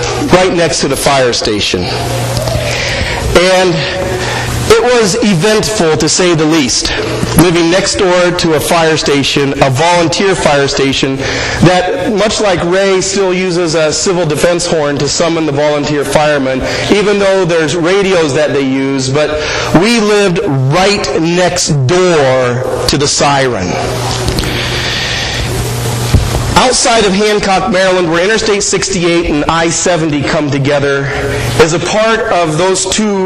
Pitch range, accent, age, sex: 145-190 Hz, American, 40-59, male